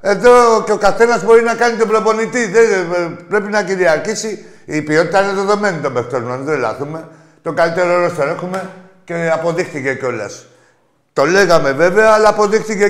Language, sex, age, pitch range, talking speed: Greek, male, 50-69, 175-220 Hz, 160 wpm